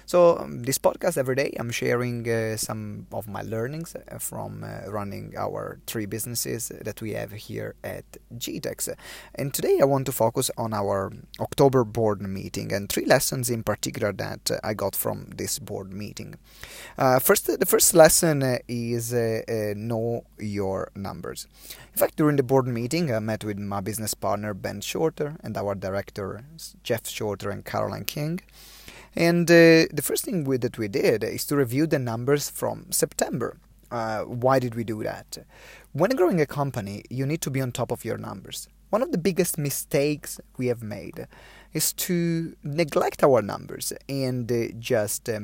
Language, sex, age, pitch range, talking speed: English, male, 30-49, 110-145 Hz, 170 wpm